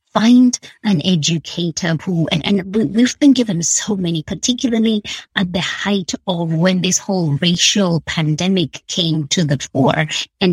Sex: female